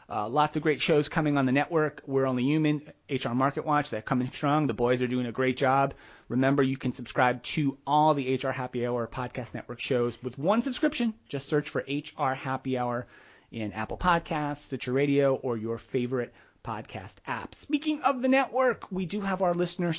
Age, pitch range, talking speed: 30-49, 125-165 Hz, 200 wpm